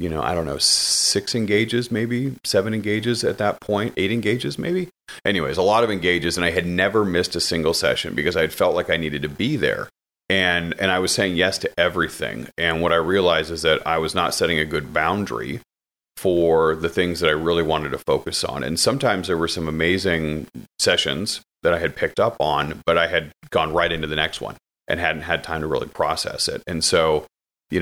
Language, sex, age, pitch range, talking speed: English, male, 40-59, 80-95 Hz, 220 wpm